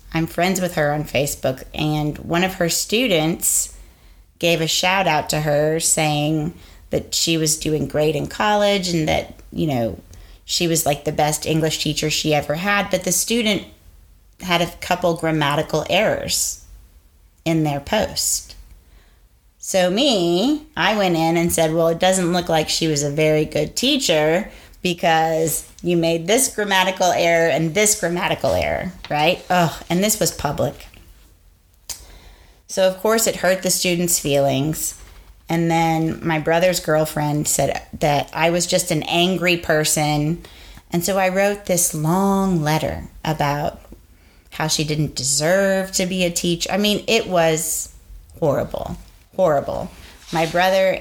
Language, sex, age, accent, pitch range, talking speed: English, female, 30-49, American, 145-180 Hz, 150 wpm